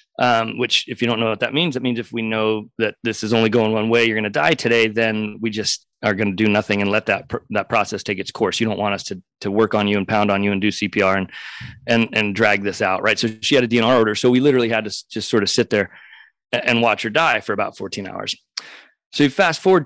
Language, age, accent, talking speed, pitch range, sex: English, 30-49, American, 285 wpm, 115-135 Hz, male